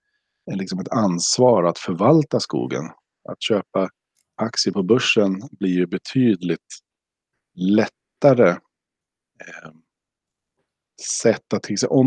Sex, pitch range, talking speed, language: male, 100-130 Hz, 85 wpm, Swedish